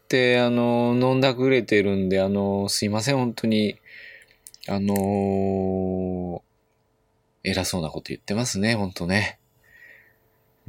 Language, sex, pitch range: Japanese, male, 95-130 Hz